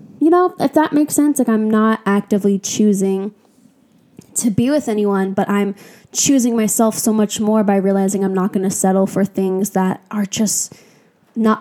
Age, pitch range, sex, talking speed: 10-29, 195-235 Hz, female, 180 wpm